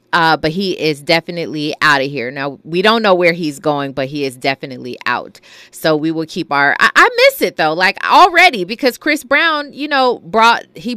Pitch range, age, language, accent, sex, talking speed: 155-225 Hz, 30-49, English, American, female, 210 wpm